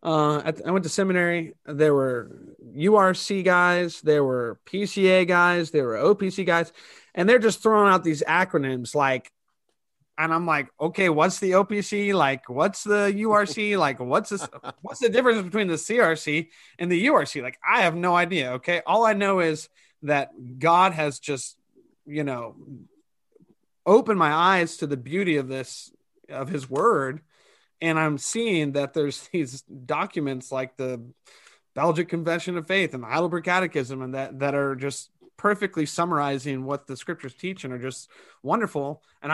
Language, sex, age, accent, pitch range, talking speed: English, male, 30-49, American, 145-185 Hz, 165 wpm